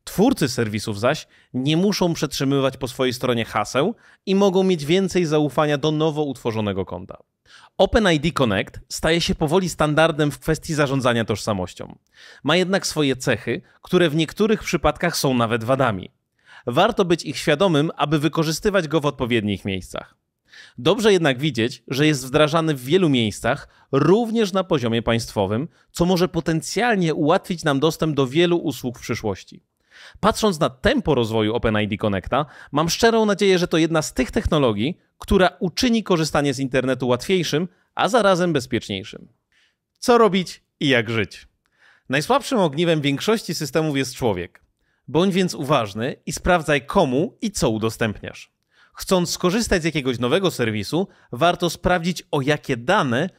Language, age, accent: Polish, 30-49, native